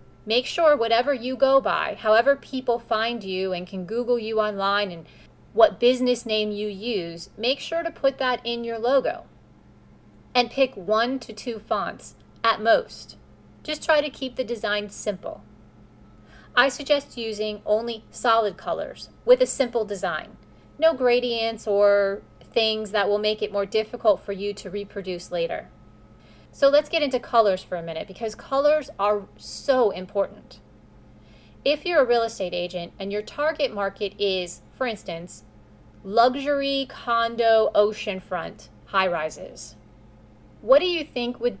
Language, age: English, 30-49